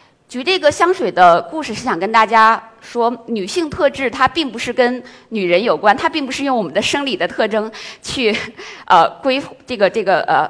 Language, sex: Chinese, female